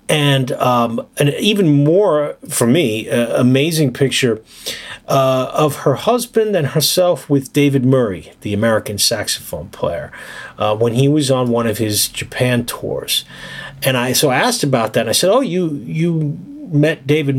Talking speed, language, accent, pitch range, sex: 165 wpm, English, American, 115-150 Hz, male